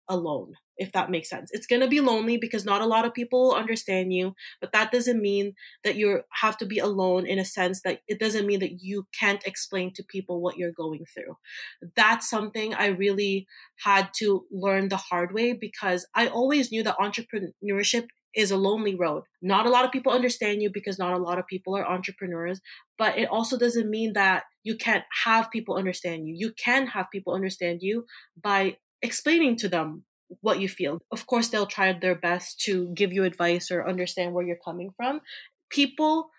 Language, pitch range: English, 185-225 Hz